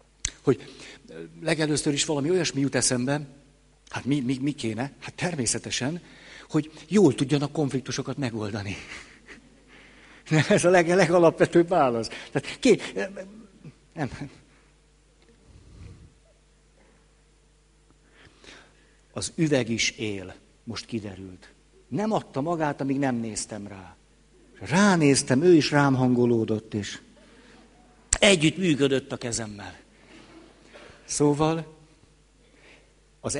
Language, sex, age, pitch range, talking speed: Hungarian, male, 60-79, 125-155 Hz, 90 wpm